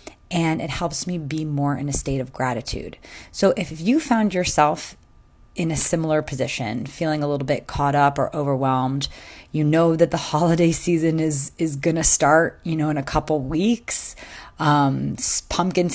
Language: English